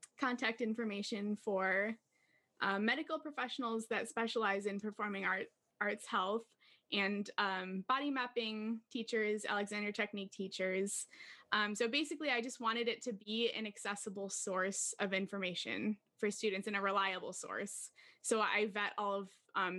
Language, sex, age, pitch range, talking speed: English, female, 10-29, 195-230 Hz, 145 wpm